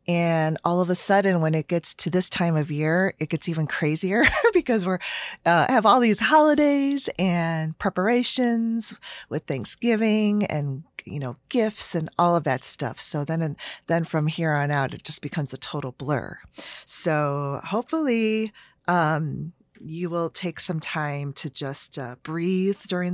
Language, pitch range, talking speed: English, 150-185 Hz, 165 wpm